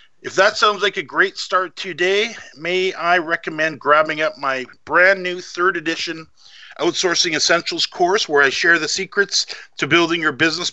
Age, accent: 50-69, American